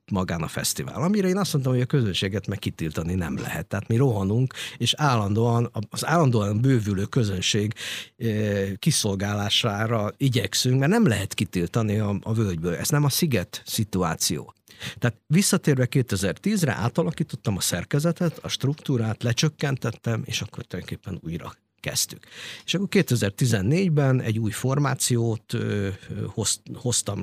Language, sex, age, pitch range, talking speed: Hungarian, male, 50-69, 95-130 Hz, 125 wpm